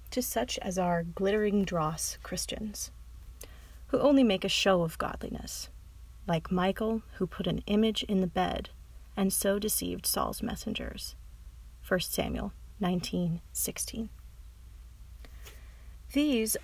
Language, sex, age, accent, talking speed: English, female, 30-49, American, 120 wpm